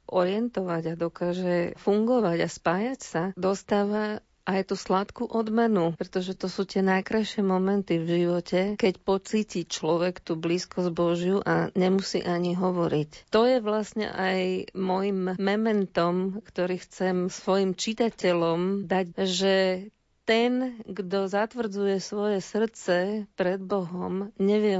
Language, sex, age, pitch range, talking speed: Slovak, female, 40-59, 185-215 Hz, 120 wpm